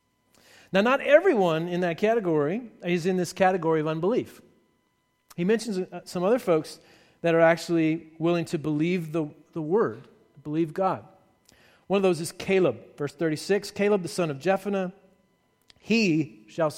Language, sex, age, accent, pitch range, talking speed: English, male, 40-59, American, 140-185 Hz, 150 wpm